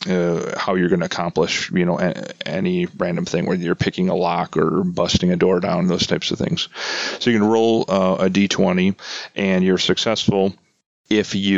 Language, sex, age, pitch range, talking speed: English, male, 30-49, 90-105 Hz, 195 wpm